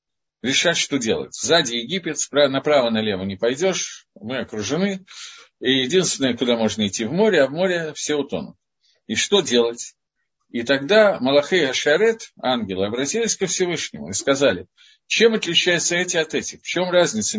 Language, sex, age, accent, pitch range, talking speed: Russian, male, 50-69, native, 115-190 Hz, 150 wpm